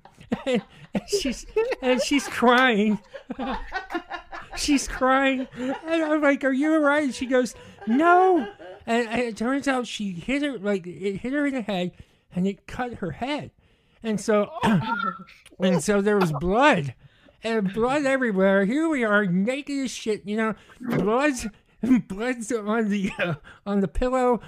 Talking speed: 150 wpm